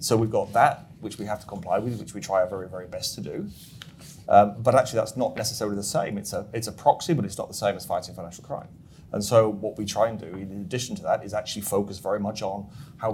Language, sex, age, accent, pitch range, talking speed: English, male, 30-49, British, 100-115 Hz, 265 wpm